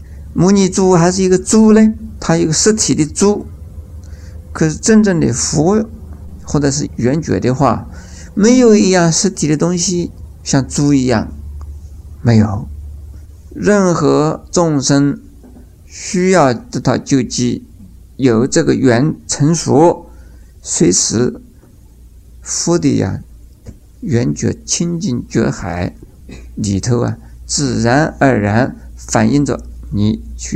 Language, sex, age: Chinese, male, 50-69